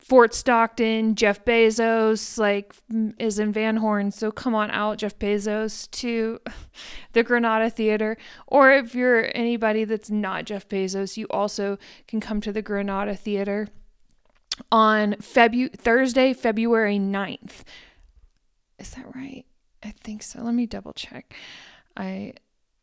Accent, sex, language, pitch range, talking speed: American, female, English, 210-240 Hz, 135 wpm